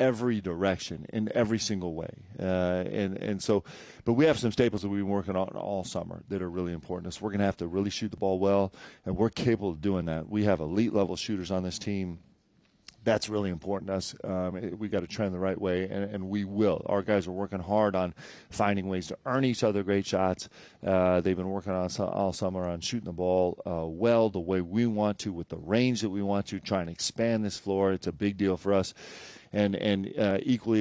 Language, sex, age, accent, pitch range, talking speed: English, male, 40-59, American, 90-105 Hz, 240 wpm